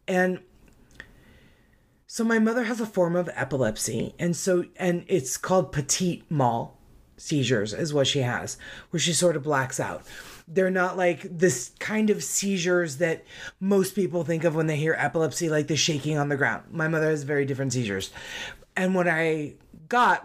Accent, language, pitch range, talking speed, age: American, English, 145-180 Hz, 175 wpm, 30-49